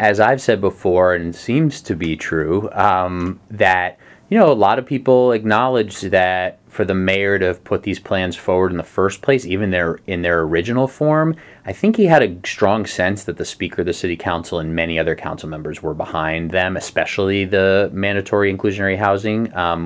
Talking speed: 195 wpm